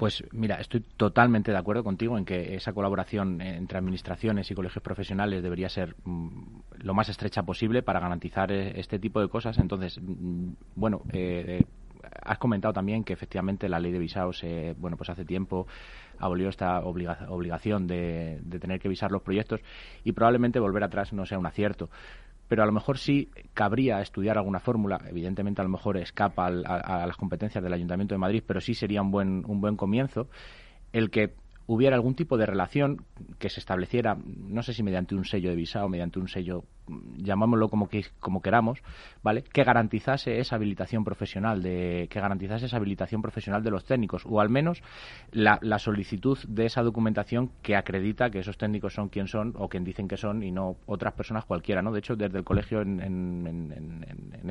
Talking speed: 190 wpm